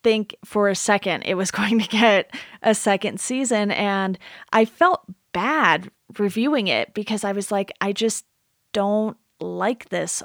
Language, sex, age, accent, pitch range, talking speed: English, female, 30-49, American, 185-220 Hz, 160 wpm